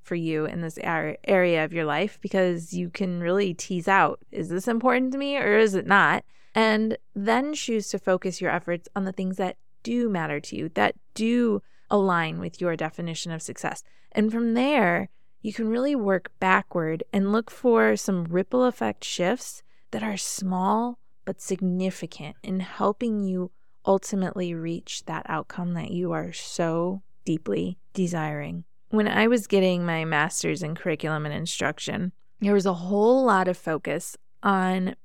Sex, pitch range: female, 170-205 Hz